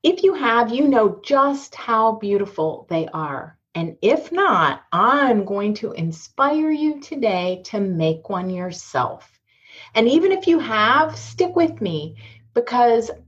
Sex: female